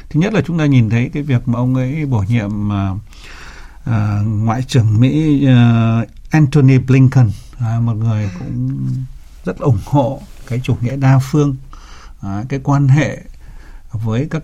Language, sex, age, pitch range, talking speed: Vietnamese, male, 60-79, 115-140 Hz, 145 wpm